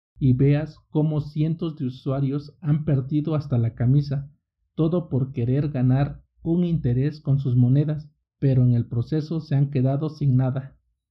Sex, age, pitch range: male, 50-69, 130-150 Hz